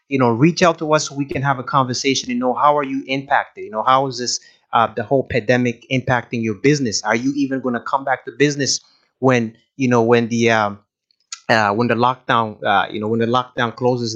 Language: English